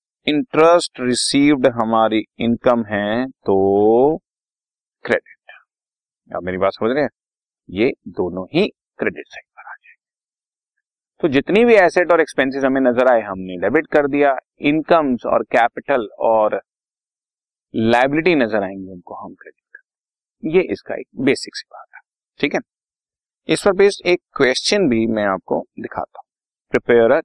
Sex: male